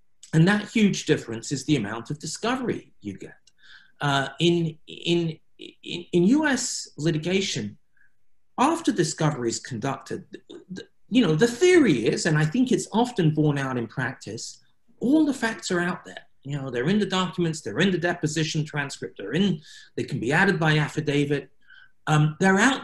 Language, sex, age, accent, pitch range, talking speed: English, male, 40-59, British, 140-200 Hz, 165 wpm